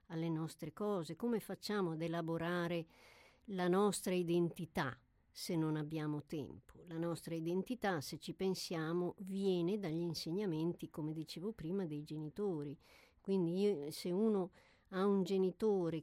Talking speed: 125 wpm